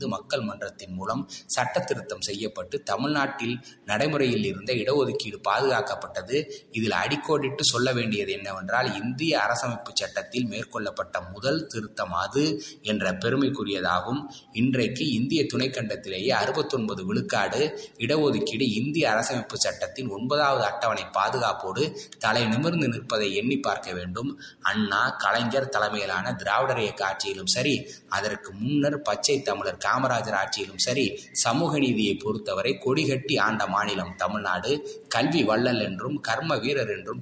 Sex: male